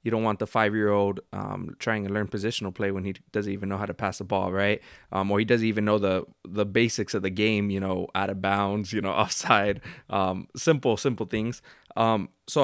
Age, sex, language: 20-39, male, English